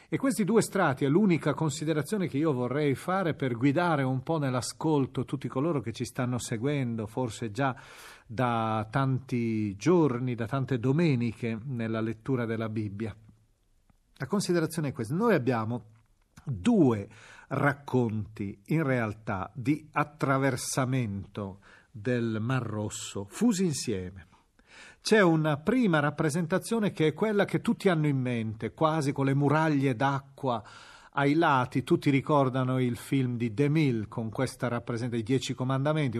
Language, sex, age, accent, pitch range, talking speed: Italian, male, 40-59, native, 115-145 Hz, 140 wpm